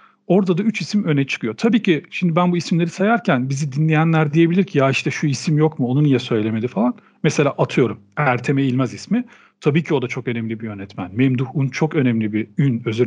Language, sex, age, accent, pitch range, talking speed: Turkish, male, 40-59, native, 125-180 Hz, 210 wpm